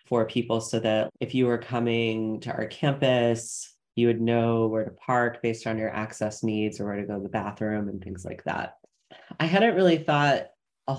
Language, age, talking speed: English, 20-39, 210 wpm